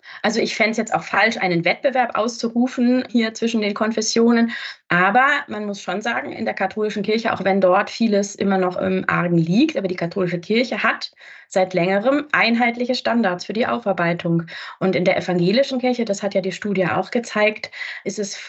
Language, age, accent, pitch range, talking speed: German, 30-49, German, 190-245 Hz, 190 wpm